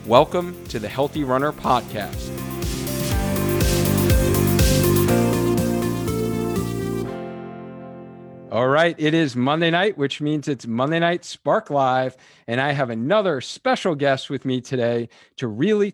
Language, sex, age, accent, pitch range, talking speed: English, male, 40-59, American, 125-160 Hz, 115 wpm